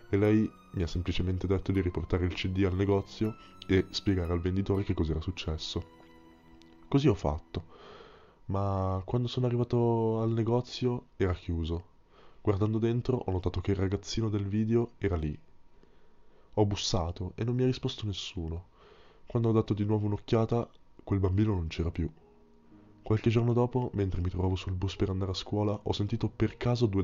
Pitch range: 90-110 Hz